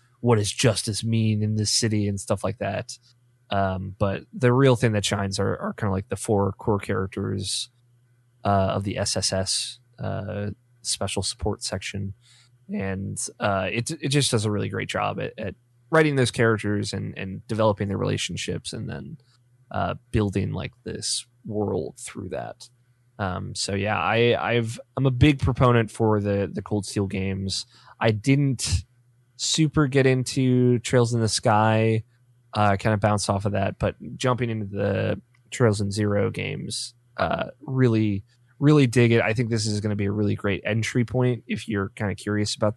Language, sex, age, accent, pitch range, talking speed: English, male, 20-39, American, 100-120 Hz, 175 wpm